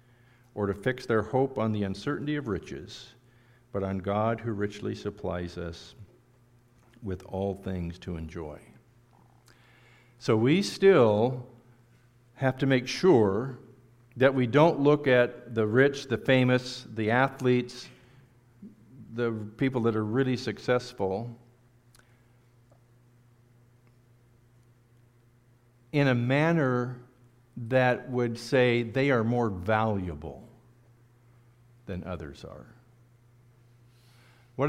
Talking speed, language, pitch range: 105 wpm, English, 105-120 Hz